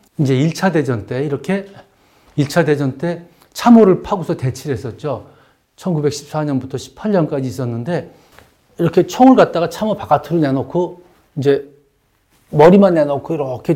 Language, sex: Korean, male